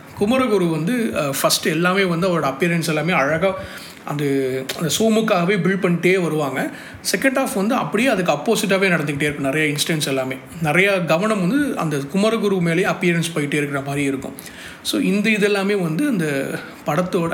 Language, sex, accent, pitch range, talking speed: Tamil, male, native, 145-185 Hz, 150 wpm